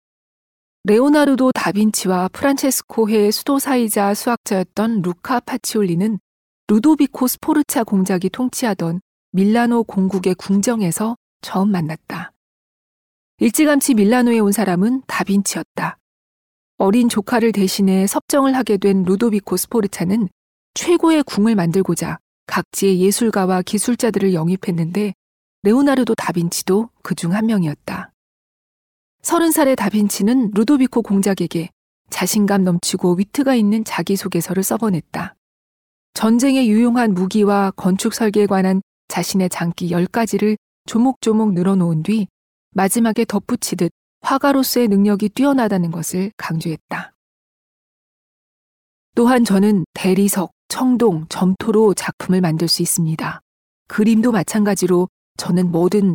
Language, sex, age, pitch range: Korean, female, 40-59, 185-230 Hz